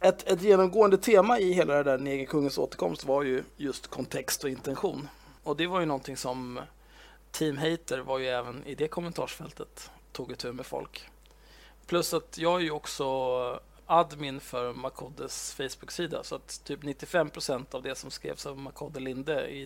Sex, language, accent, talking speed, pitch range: male, Swedish, native, 170 wpm, 135-180 Hz